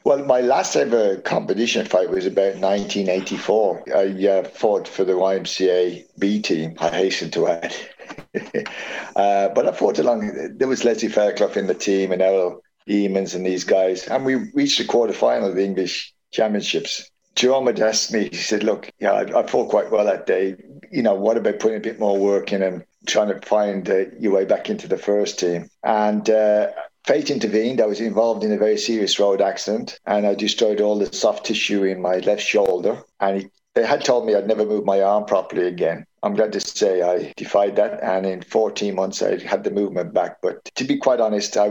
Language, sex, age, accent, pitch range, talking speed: English, male, 50-69, British, 95-105 Hz, 205 wpm